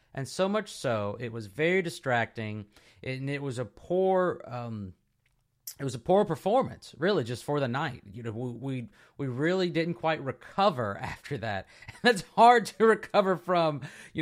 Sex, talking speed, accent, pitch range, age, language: male, 170 wpm, American, 115-150 Hz, 30-49, English